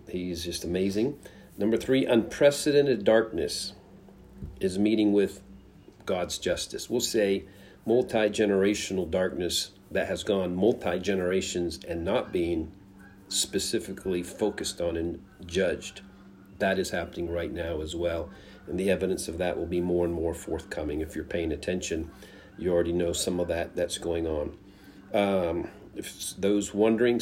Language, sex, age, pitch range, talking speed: English, male, 40-59, 90-105 Hz, 140 wpm